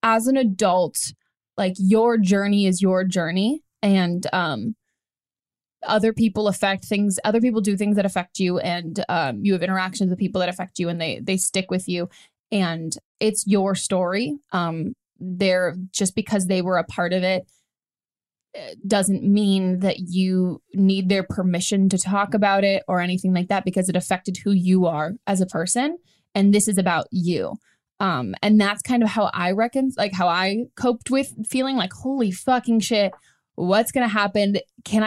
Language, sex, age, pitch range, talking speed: English, female, 20-39, 180-210 Hz, 180 wpm